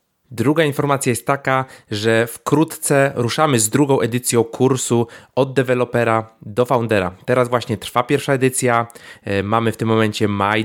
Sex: male